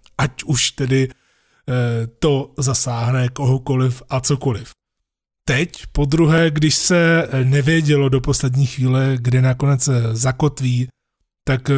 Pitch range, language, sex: 125-145 Hz, Czech, male